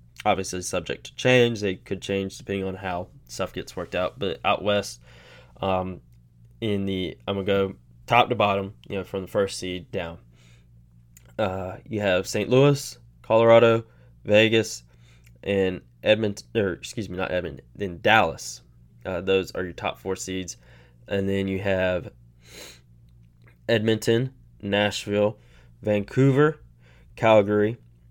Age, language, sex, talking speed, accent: 10-29, English, male, 135 wpm, American